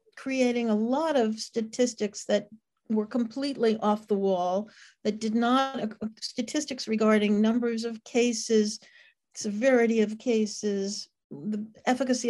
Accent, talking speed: American, 115 wpm